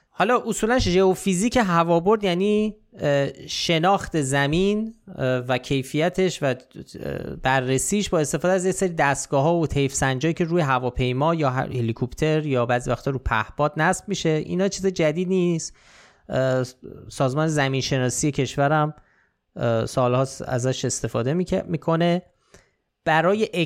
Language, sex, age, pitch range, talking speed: Persian, male, 30-49, 130-180 Hz, 115 wpm